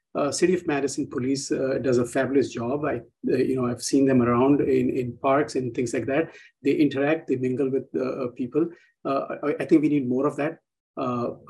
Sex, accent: male, Indian